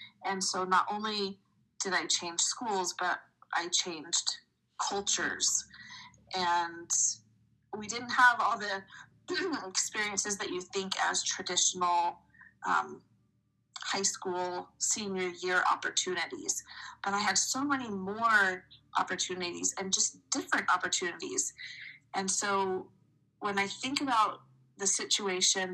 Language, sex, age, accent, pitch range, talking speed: English, female, 30-49, American, 180-215 Hz, 115 wpm